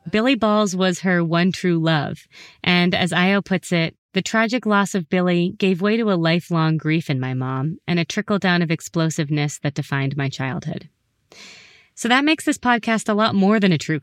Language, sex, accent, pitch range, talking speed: English, female, American, 155-205 Hz, 195 wpm